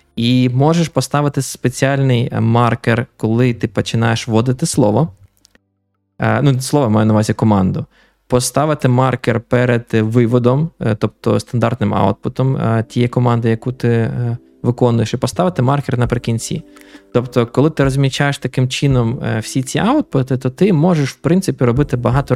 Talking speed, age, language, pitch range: 130 wpm, 20-39, Ukrainian, 105-130 Hz